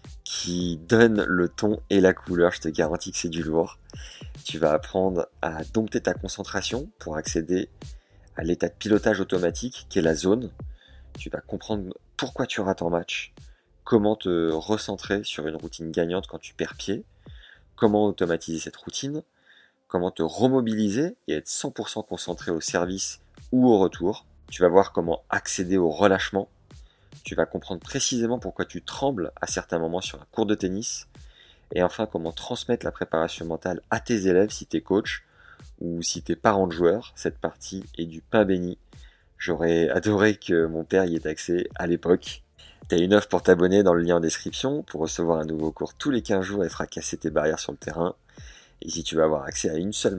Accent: French